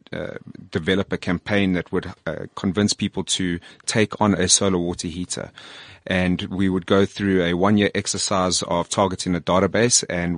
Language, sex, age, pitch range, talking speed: English, male, 30-49, 90-105 Hz, 175 wpm